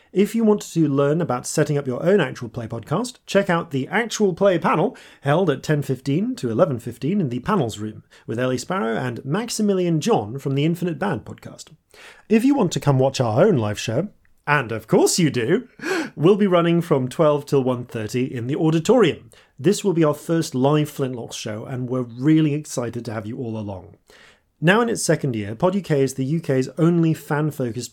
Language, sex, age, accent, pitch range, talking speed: English, male, 30-49, British, 125-175 Hz, 200 wpm